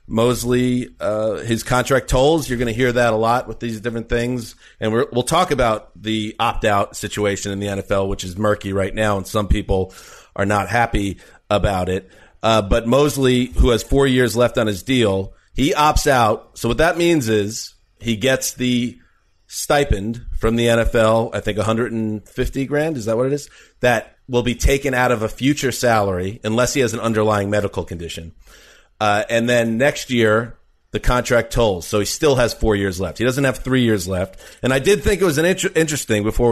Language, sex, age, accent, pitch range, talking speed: English, male, 40-59, American, 105-125 Hz, 200 wpm